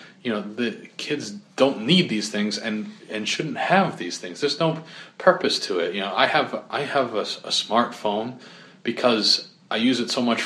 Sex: male